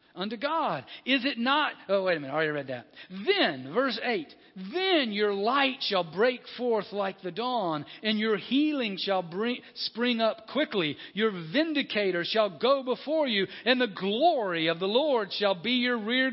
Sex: male